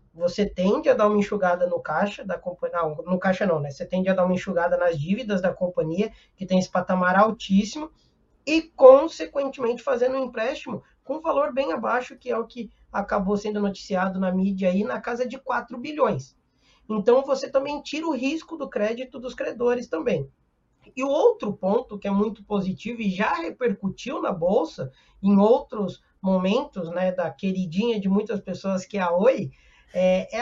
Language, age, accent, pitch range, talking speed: Portuguese, 20-39, Brazilian, 185-255 Hz, 185 wpm